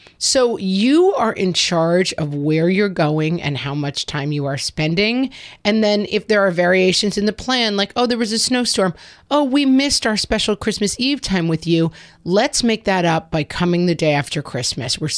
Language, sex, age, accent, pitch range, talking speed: English, female, 30-49, American, 155-210 Hz, 205 wpm